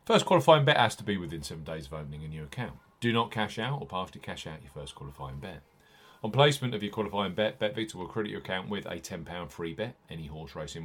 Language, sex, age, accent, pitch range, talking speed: English, male, 40-59, British, 90-135 Hz, 255 wpm